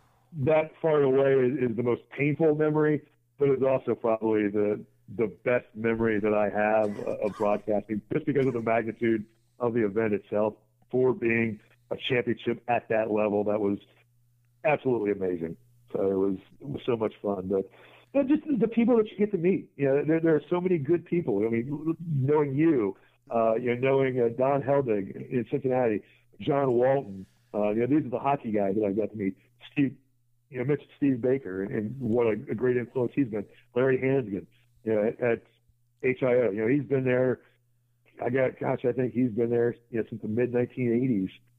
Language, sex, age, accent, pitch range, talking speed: English, male, 60-79, American, 110-135 Hz, 200 wpm